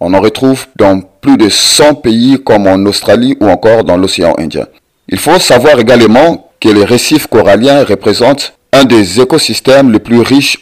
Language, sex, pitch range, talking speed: French, male, 105-135 Hz, 175 wpm